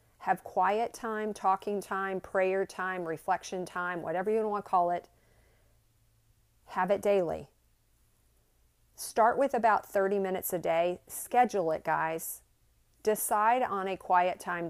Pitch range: 160-210 Hz